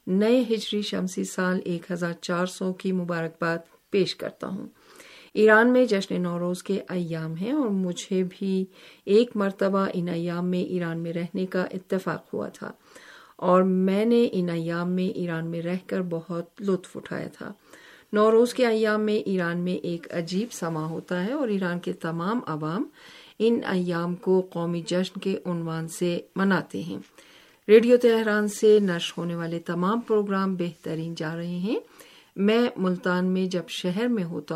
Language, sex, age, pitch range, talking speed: Urdu, female, 50-69, 175-210 Hz, 165 wpm